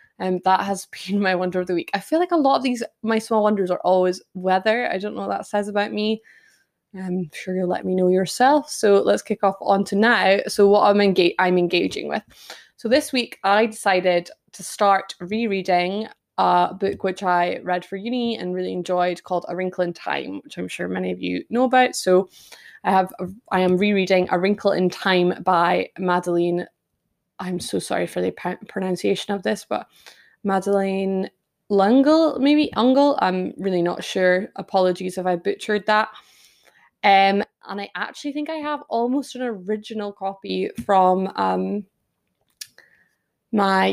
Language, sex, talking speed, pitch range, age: English, female, 180 wpm, 185-215 Hz, 20-39